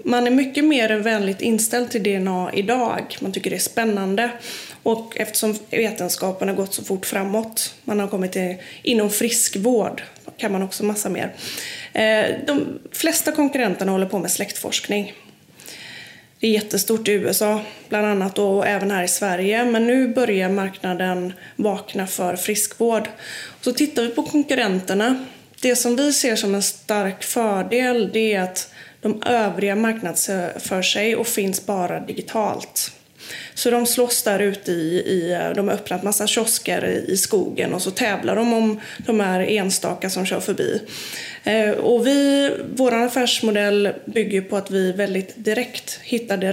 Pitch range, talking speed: 190-235 Hz, 155 wpm